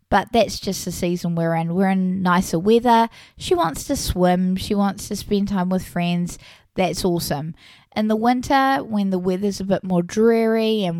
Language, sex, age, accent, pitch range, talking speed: English, female, 20-39, Australian, 175-210 Hz, 190 wpm